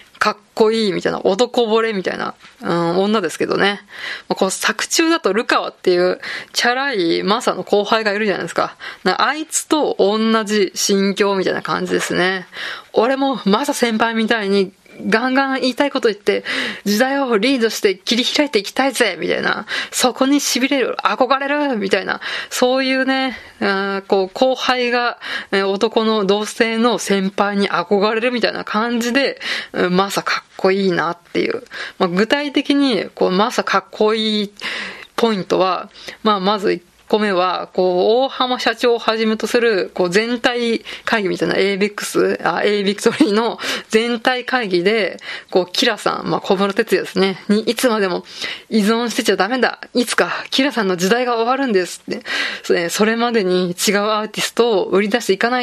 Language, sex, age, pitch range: Japanese, female, 20-39, 195-245 Hz